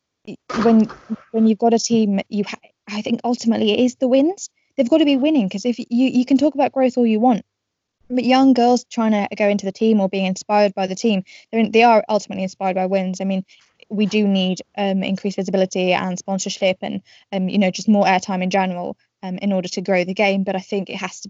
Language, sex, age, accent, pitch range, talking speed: English, female, 10-29, British, 190-230 Hz, 235 wpm